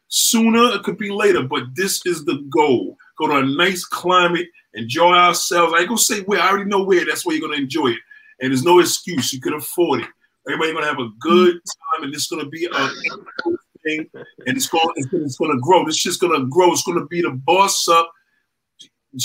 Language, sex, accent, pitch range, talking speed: English, male, American, 170-215 Hz, 240 wpm